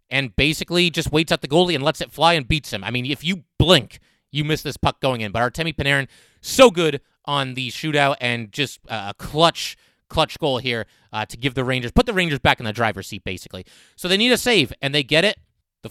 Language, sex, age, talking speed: English, male, 30-49, 240 wpm